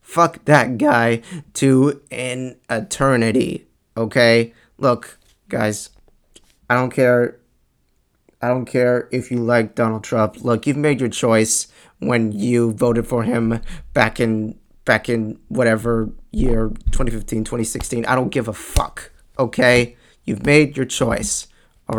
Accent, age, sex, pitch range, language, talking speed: American, 20-39, male, 110-130 Hz, English, 135 wpm